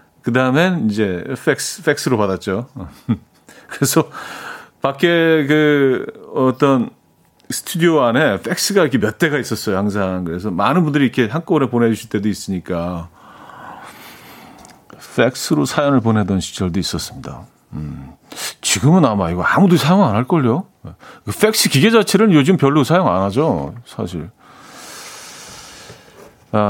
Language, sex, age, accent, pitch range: Korean, male, 40-59, native, 105-150 Hz